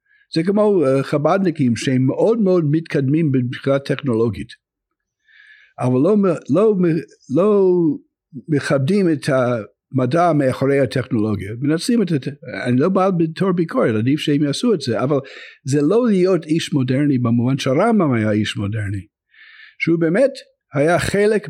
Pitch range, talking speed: 120-175 Hz, 135 wpm